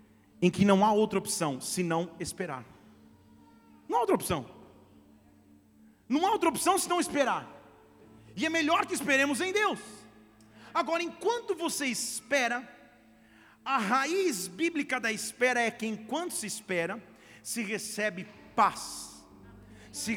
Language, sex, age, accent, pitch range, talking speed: Portuguese, male, 40-59, Brazilian, 215-280 Hz, 135 wpm